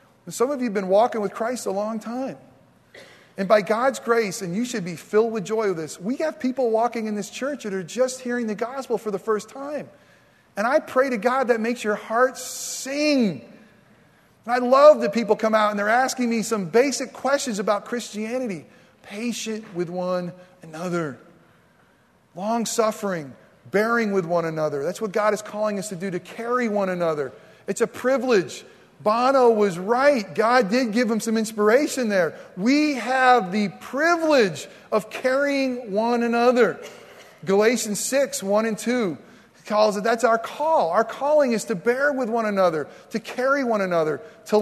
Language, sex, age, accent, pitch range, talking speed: English, male, 40-59, American, 205-250 Hz, 180 wpm